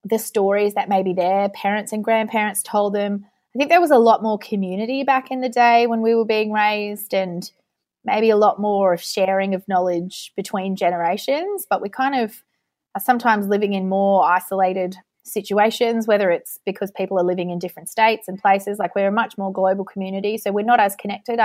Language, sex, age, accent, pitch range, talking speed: English, female, 20-39, Australian, 190-225 Hz, 200 wpm